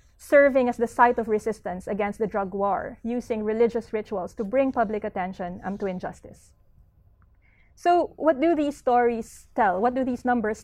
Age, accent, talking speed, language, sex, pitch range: 20-39, Filipino, 170 wpm, English, female, 205-245 Hz